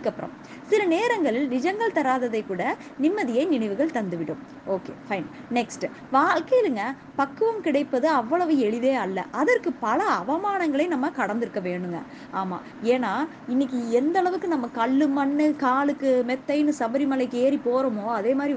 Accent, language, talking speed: native, Tamil, 45 wpm